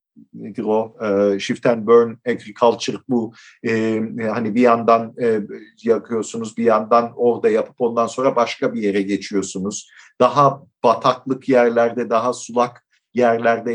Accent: native